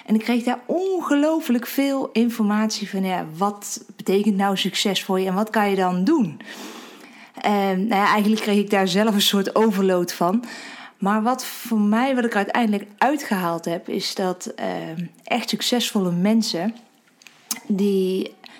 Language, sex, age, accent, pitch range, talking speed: Dutch, female, 20-39, Dutch, 185-230 Hz, 140 wpm